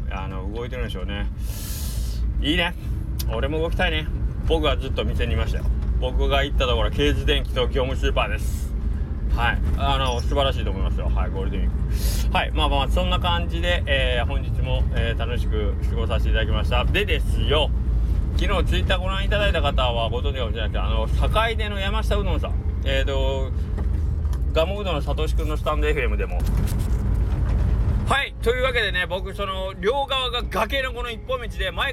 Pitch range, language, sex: 70-105 Hz, Japanese, male